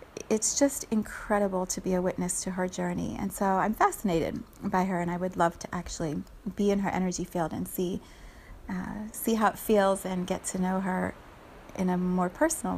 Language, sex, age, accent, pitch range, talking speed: English, female, 30-49, American, 185-220 Hz, 200 wpm